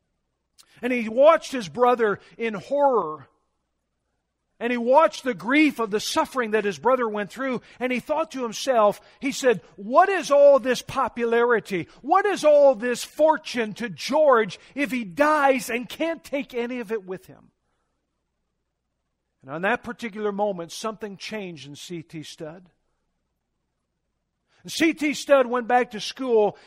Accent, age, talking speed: American, 50-69, 150 wpm